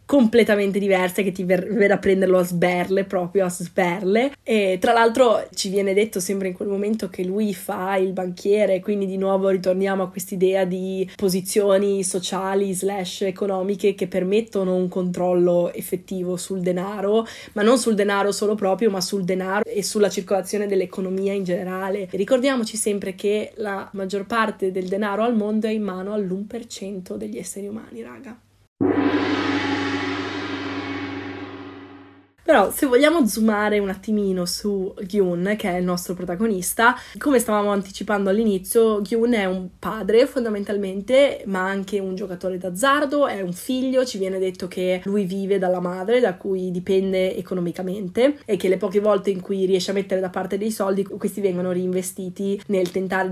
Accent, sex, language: native, female, Italian